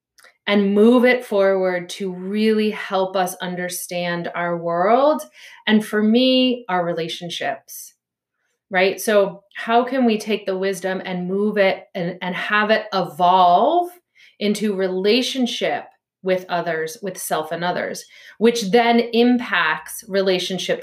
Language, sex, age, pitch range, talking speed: English, female, 30-49, 185-235 Hz, 125 wpm